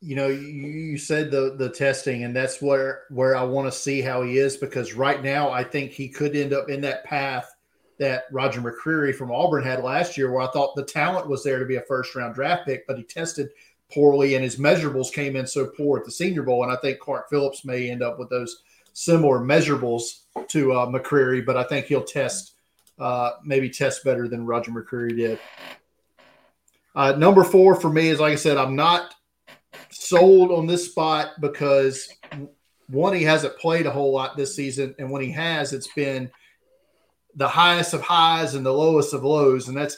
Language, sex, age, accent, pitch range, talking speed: English, male, 40-59, American, 130-155 Hz, 205 wpm